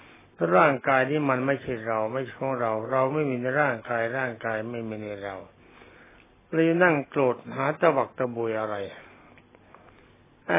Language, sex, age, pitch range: Thai, male, 60-79, 115-145 Hz